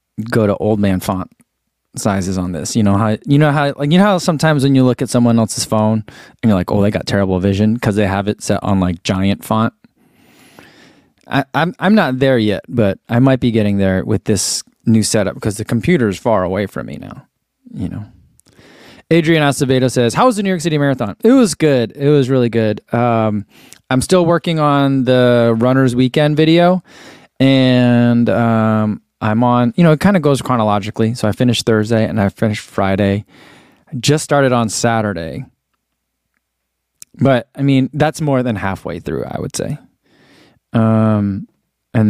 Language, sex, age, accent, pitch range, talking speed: English, male, 20-39, American, 110-140 Hz, 190 wpm